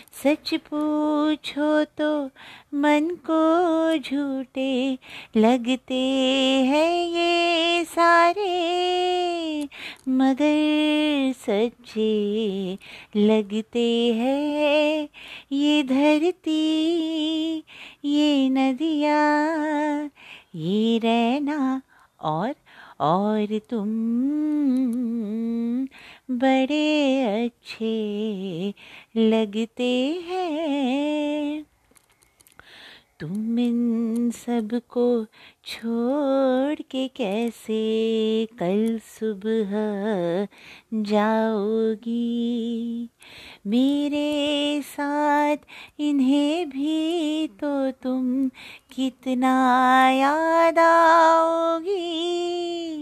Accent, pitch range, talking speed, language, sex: native, 230-300 Hz, 50 wpm, Hindi, female